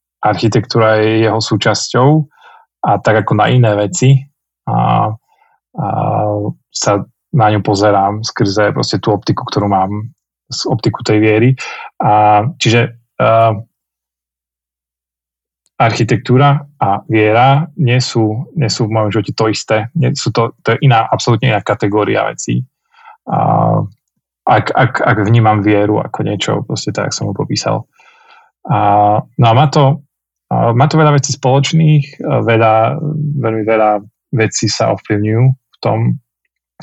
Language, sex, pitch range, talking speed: Slovak, male, 105-130 Hz, 130 wpm